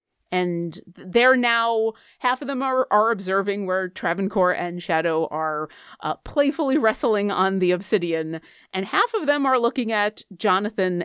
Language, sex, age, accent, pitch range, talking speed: English, female, 30-49, American, 180-260 Hz, 150 wpm